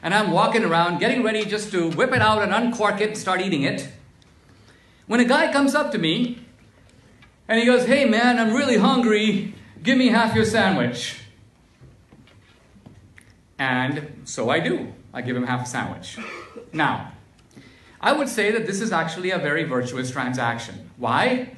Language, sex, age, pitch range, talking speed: English, male, 50-69, 140-230 Hz, 170 wpm